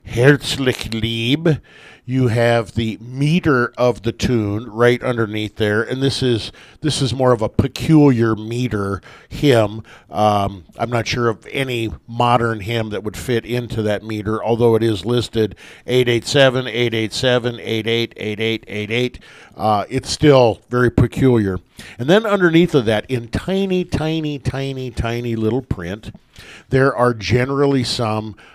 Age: 50-69